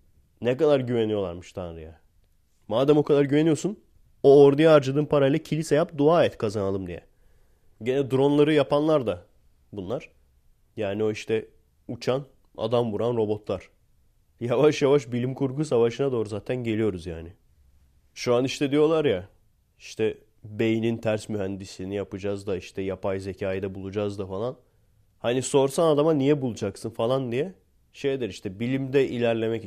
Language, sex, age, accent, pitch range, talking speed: Turkish, male, 30-49, native, 95-140 Hz, 140 wpm